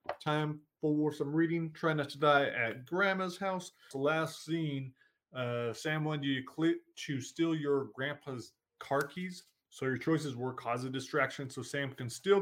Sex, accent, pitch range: male, American, 125-155 Hz